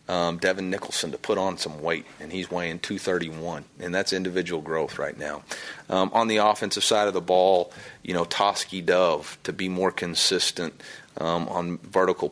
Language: English